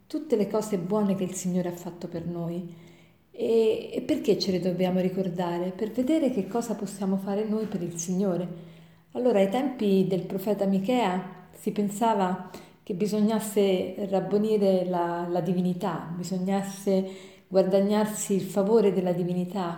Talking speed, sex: 145 wpm, female